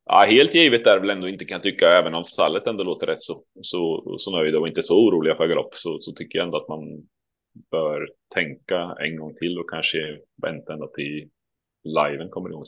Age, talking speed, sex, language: 30-49, 220 wpm, male, Swedish